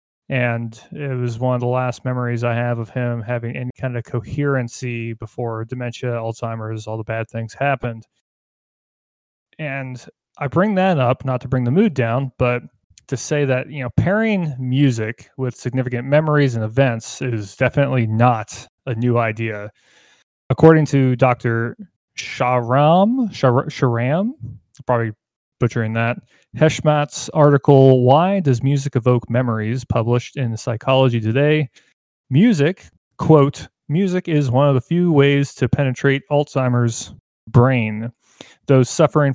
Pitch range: 115-140 Hz